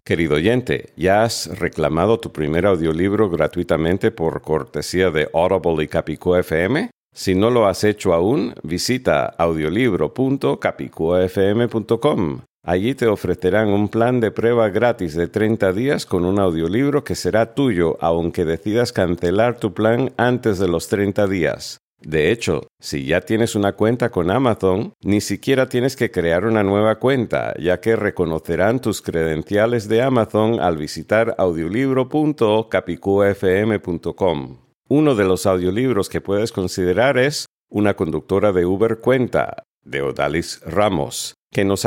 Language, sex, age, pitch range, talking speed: Spanish, male, 50-69, 85-115 Hz, 140 wpm